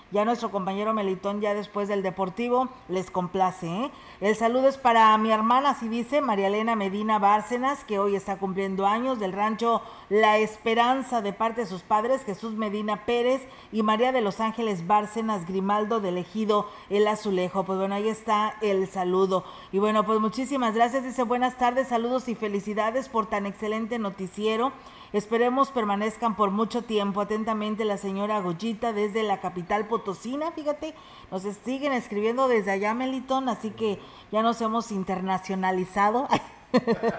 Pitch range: 200-240 Hz